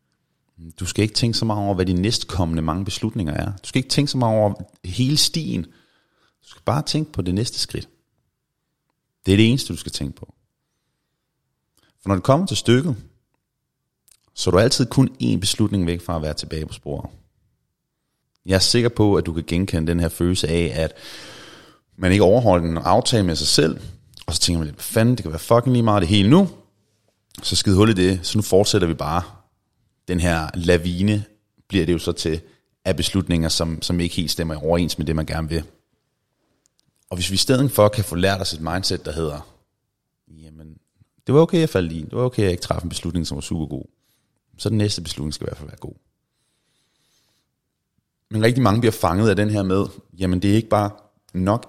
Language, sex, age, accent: Danish, male, 30-49, native